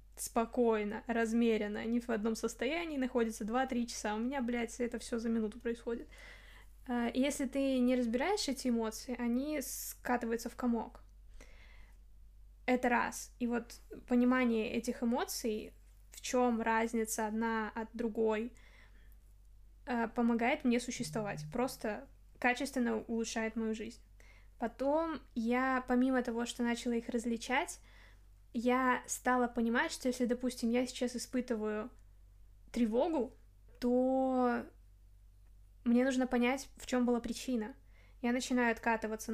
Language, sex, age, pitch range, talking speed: Russian, female, 10-29, 225-250 Hz, 115 wpm